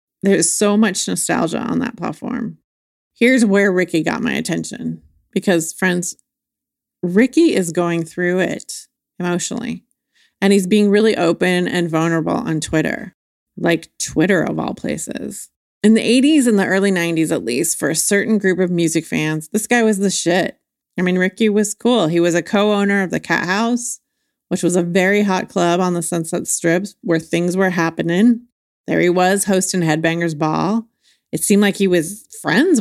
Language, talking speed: English, 175 wpm